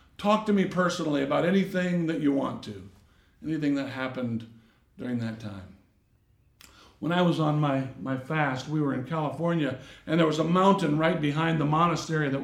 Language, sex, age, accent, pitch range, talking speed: English, male, 60-79, American, 140-185 Hz, 180 wpm